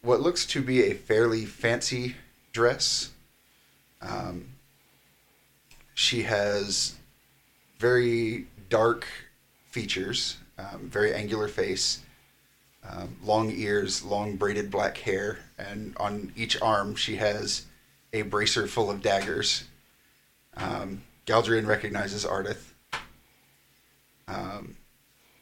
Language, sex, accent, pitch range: English, male, American, 105-115 Hz